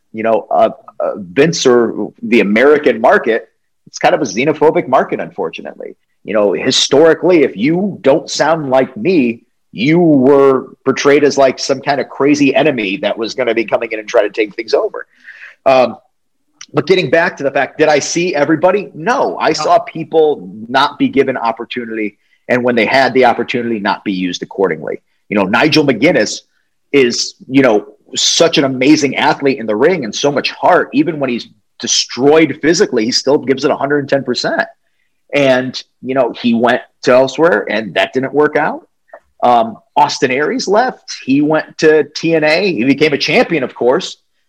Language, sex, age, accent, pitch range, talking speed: English, male, 30-49, American, 130-170 Hz, 175 wpm